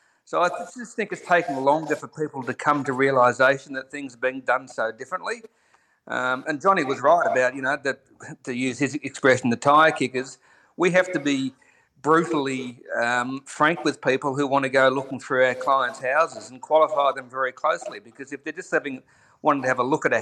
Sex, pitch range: male, 125-150 Hz